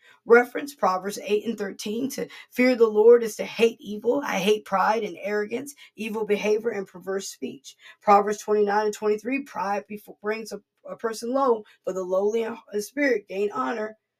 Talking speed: 170 wpm